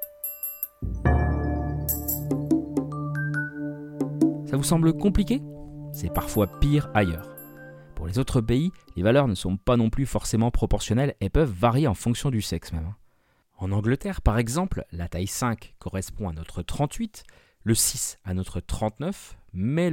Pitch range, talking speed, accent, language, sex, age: 90-130 Hz, 140 wpm, French, French, male, 30-49